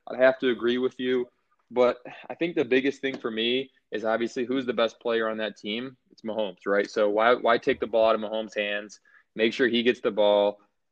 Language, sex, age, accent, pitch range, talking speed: English, male, 20-39, American, 110-130 Hz, 230 wpm